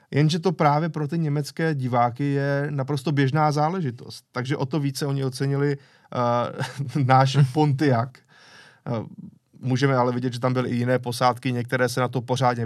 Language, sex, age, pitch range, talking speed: Czech, male, 20-39, 120-140 Hz, 155 wpm